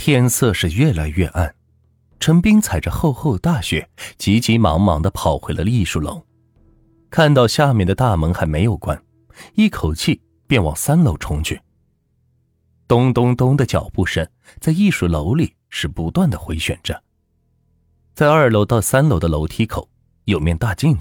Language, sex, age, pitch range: Chinese, male, 30-49, 85-125 Hz